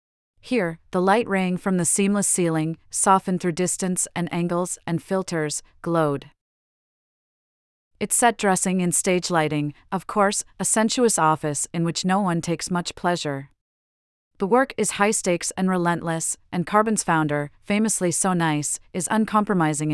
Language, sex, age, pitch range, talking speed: English, female, 40-59, 160-195 Hz, 145 wpm